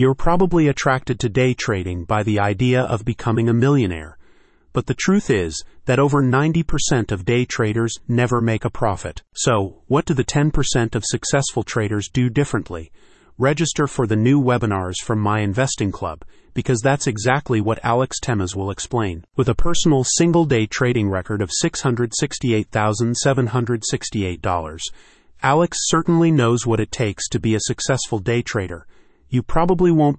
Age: 30-49